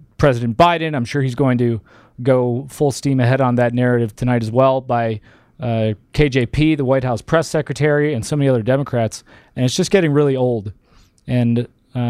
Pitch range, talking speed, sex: 115-135 Hz, 185 wpm, male